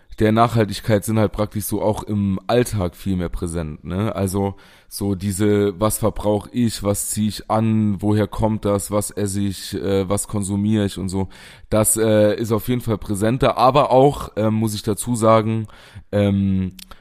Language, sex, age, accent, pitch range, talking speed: German, male, 20-39, German, 95-110 Hz, 175 wpm